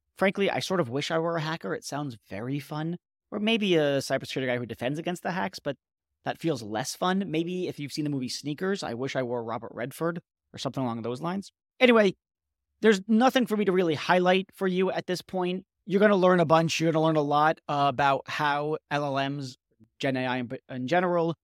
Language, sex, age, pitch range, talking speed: English, male, 30-49, 135-180 Hz, 220 wpm